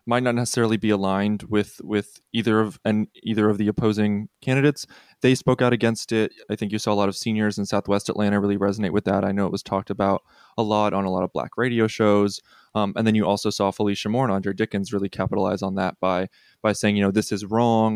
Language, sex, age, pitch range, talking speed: English, male, 20-39, 100-115 Hz, 245 wpm